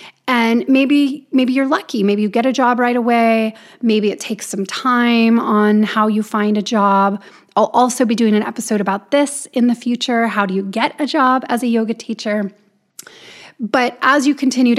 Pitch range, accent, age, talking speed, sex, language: 210-255 Hz, American, 30-49, 195 wpm, female, English